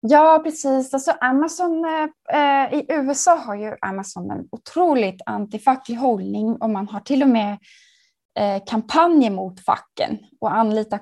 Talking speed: 140 wpm